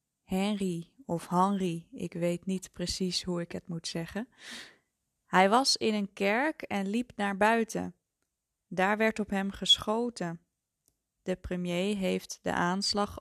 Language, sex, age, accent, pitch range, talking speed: Dutch, female, 20-39, Dutch, 175-215 Hz, 140 wpm